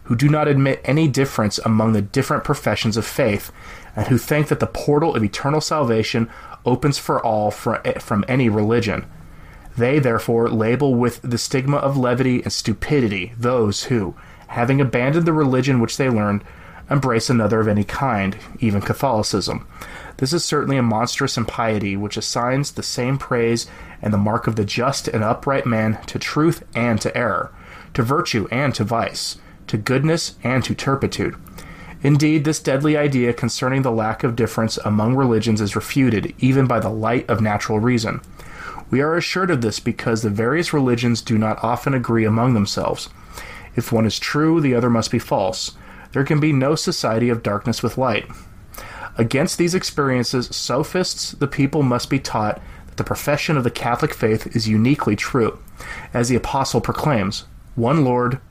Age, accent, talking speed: 30-49, American, 170 wpm